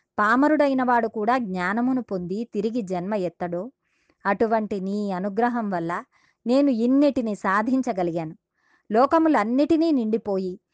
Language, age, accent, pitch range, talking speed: Telugu, 20-39, native, 190-260 Hz, 95 wpm